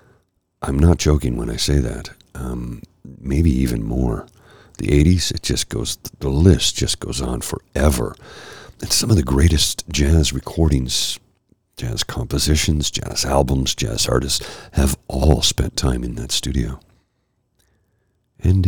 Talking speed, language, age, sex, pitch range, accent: 140 wpm, English, 50-69, male, 65-95 Hz, American